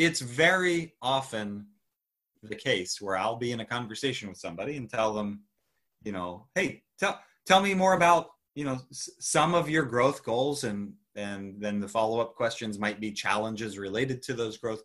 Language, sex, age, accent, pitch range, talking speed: English, male, 30-49, American, 110-150 Hz, 185 wpm